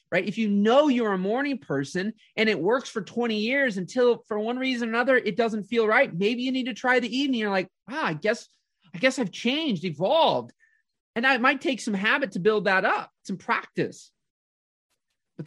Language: English